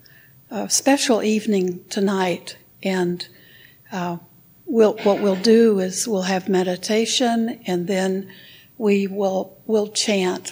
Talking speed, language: 120 wpm, English